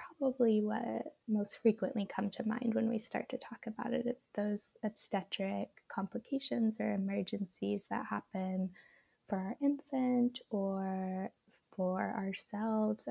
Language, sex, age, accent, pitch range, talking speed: English, female, 10-29, American, 195-230 Hz, 130 wpm